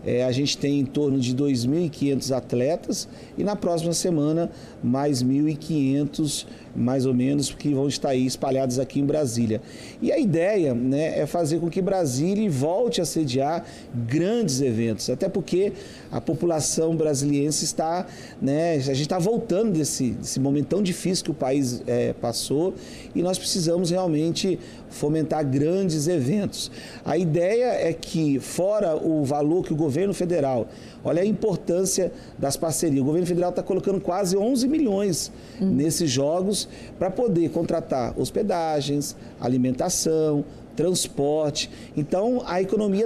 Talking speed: 140 wpm